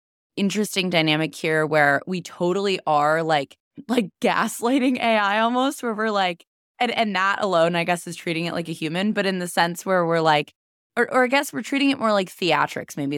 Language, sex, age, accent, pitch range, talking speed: English, female, 20-39, American, 160-225 Hz, 205 wpm